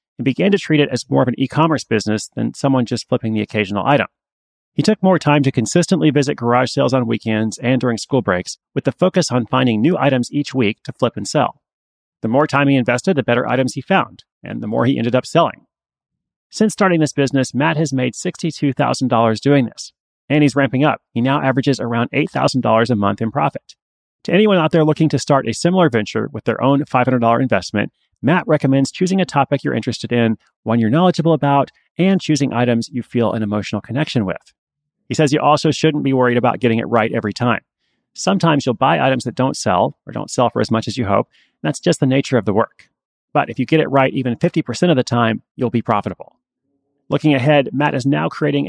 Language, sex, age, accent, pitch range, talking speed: English, male, 30-49, American, 120-150 Hz, 220 wpm